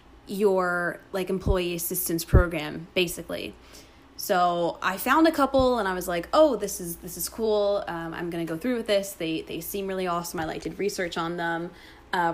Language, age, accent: English, 20-39, American